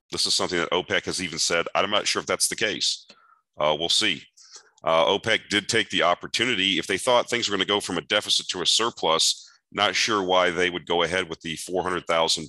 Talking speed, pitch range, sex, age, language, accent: 230 wpm, 80-90 Hz, male, 40-59, English, American